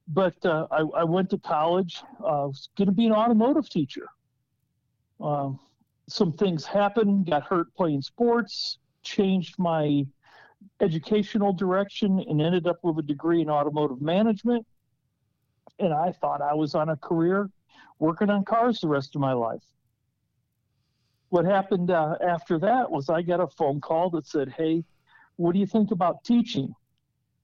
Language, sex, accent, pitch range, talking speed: English, male, American, 145-190 Hz, 155 wpm